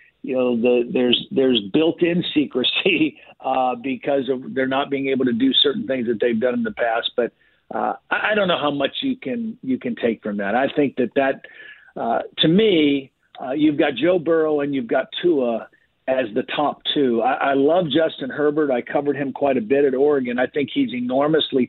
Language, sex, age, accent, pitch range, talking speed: English, male, 50-69, American, 125-155 Hz, 210 wpm